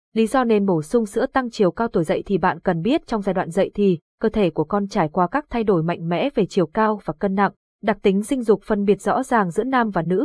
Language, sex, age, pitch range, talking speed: Vietnamese, female, 20-39, 185-245 Hz, 285 wpm